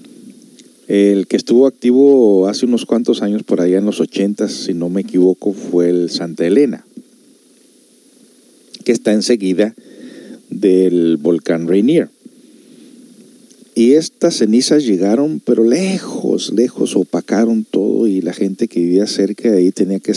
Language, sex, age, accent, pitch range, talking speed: Spanish, male, 50-69, Mexican, 95-130 Hz, 135 wpm